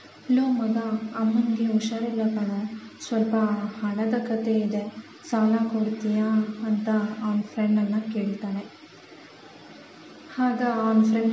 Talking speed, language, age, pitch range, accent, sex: 90 wpm, Kannada, 20-39, 210-225 Hz, native, female